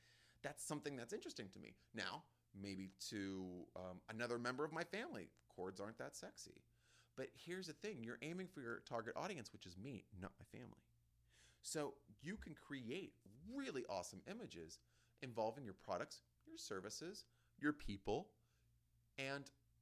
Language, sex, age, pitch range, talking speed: English, male, 30-49, 95-125 Hz, 150 wpm